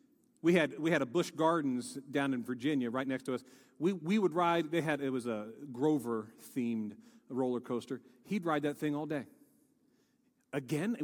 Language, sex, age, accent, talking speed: English, male, 40-59, American, 180 wpm